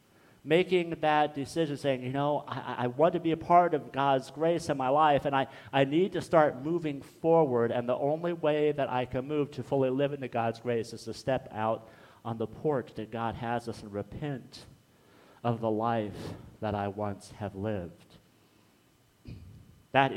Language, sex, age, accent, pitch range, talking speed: English, male, 50-69, American, 115-150 Hz, 185 wpm